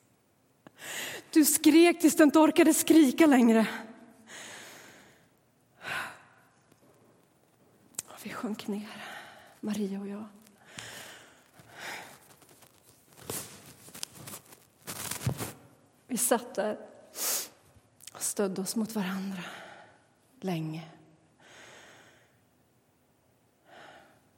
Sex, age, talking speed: female, 30-49, 60 wpm